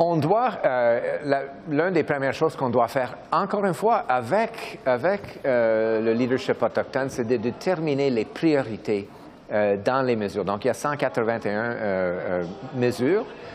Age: 50-69